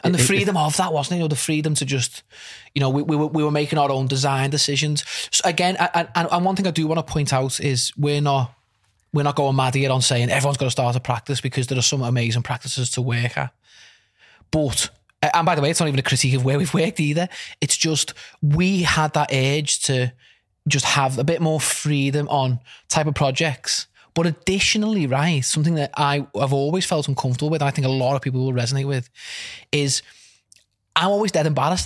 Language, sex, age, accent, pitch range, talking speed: English, male, 20-39, British, 135-170 Hz, 230 wpm